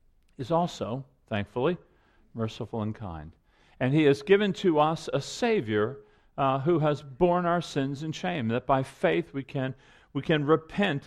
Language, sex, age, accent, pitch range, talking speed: English, male, 50-69, American, 140-205 Hz, 165 wpm